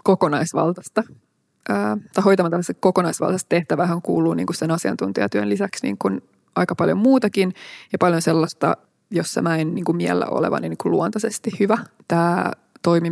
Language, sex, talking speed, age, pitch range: Finnish, female, 135 wpm, 20-39, 170-230 Hz